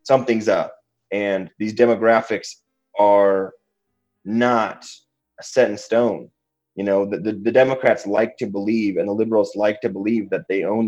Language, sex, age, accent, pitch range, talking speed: English, male, 30-49, American, 100-110 Hz, 155 wpm